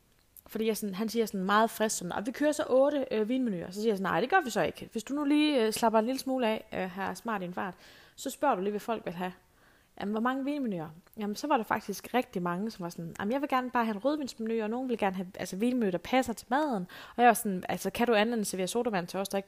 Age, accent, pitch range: 20-39, native, 190-250 Hz